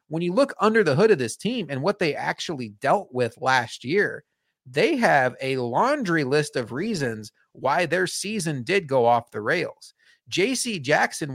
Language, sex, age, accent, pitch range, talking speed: English, male, 30-49, American, 130-195 Hz, 180 wpm